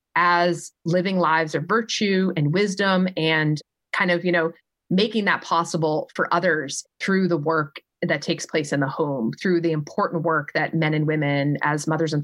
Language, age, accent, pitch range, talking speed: English, 30-49, American, 155-180 Hz, 180 wpm